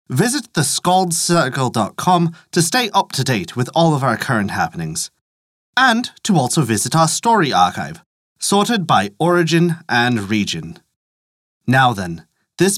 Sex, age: male, 30-49